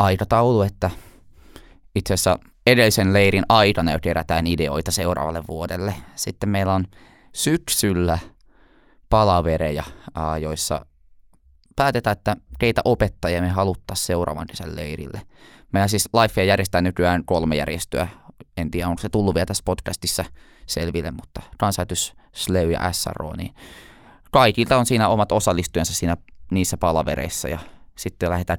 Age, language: 20-39, Finnish